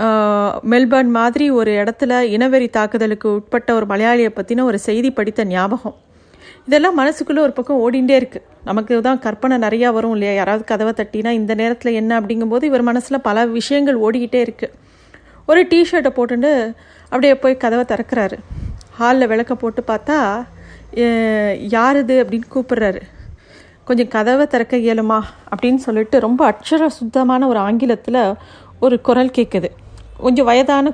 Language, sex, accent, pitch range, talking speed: Tamil, female, native, 220-265 Hz, 135 wpm